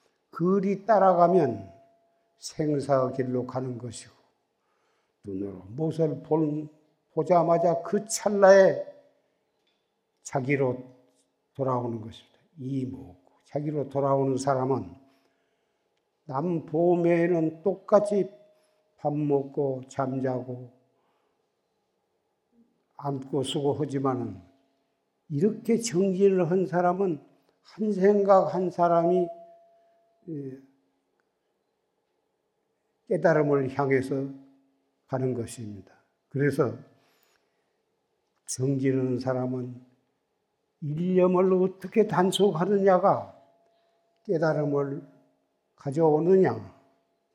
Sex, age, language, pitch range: male, 60-79, Korean, 135-190 Hz